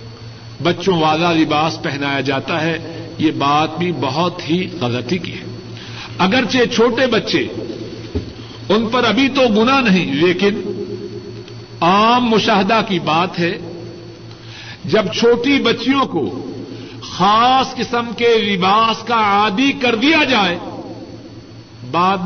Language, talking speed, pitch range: Urdu, 115 wpm, 150-215 Hz